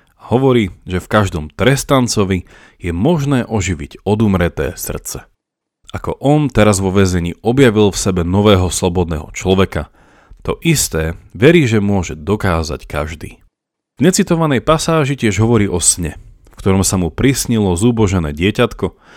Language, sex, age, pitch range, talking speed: Slovak, male, 40-59, 85-115 Hz, 130 wpm